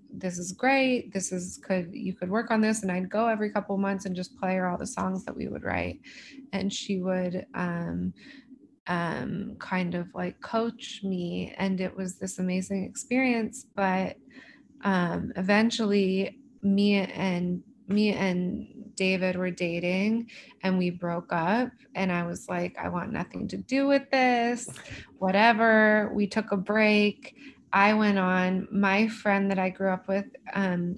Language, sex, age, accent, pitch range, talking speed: English, female, 20-39, American, 185-225 Hz, 165 wpm